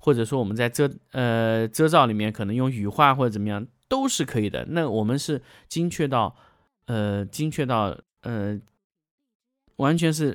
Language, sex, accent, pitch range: Chinese, male, native, 110-155 Hz